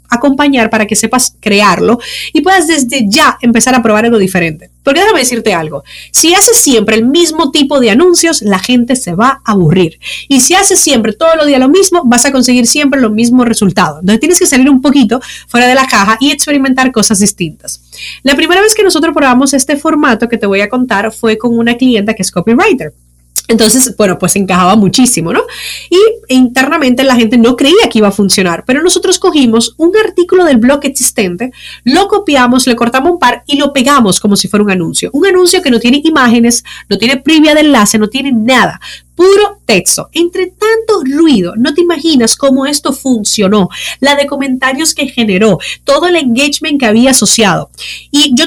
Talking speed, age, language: 195 wpm, 30-49, Spanish